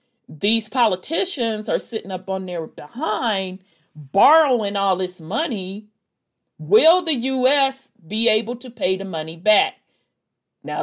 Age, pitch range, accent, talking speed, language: 40-59, 185-245 Hz, American, 125 wpm, English